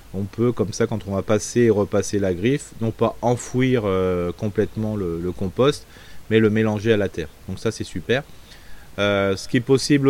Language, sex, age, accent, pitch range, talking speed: French, male, 30-49, French, 95-115 Hz, 210 wpm